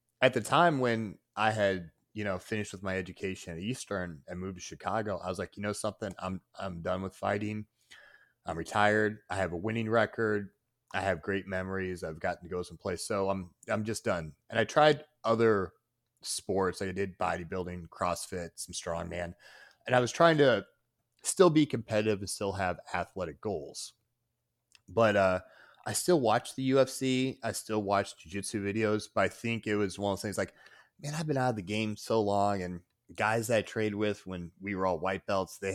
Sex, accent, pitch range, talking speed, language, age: male, American, 95-115 Hz, 200 wpm, English, 30-49